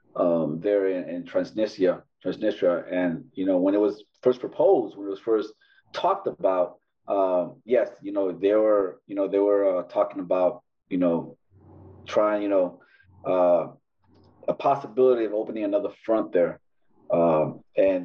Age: 30-49